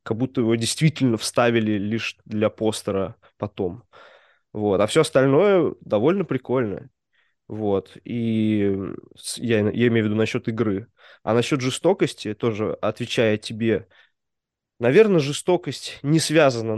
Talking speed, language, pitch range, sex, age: 120 wpm, Russian, 110-135 Hz, male, 20-39